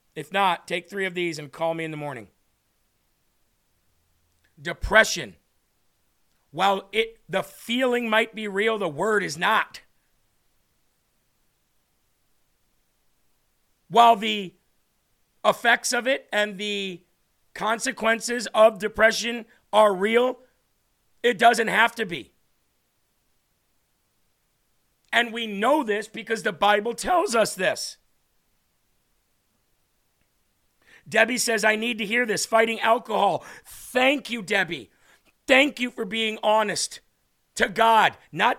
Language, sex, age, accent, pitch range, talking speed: English, male, 50-69, American, 195-235 Hz, 110 wpm